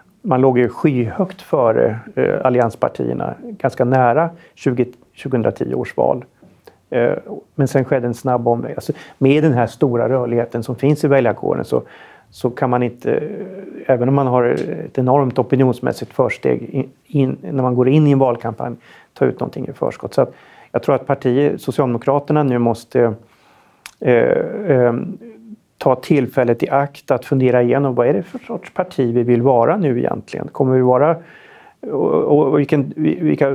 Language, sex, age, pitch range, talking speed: Swedish, male, 40-59, 125-165 Hz, 165 wpm